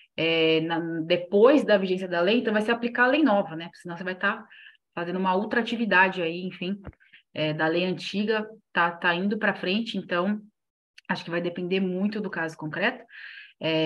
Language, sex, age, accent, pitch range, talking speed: Portuguese, female, 20-39, Brazilian, 170-215 Hz, 200 wpm